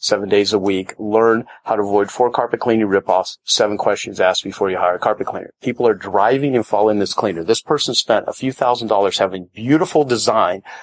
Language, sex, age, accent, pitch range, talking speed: English, male, 30-49, American, 105-130 Hz, 210 wpm